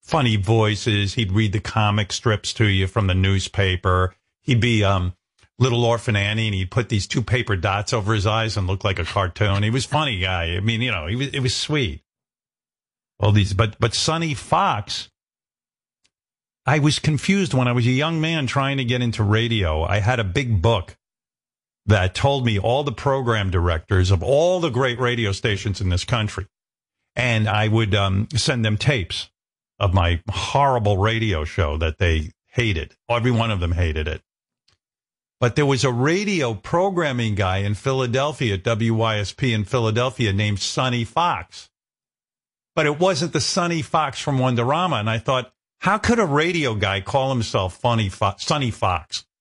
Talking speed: 175 wpm